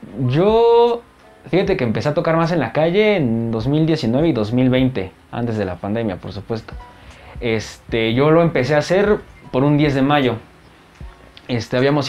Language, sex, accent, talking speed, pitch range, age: Spanish, male, Mexican, 155 wpm, 120-160 Hz, 20-39